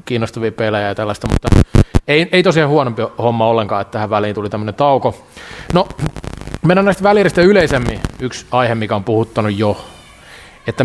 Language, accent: Finnish, native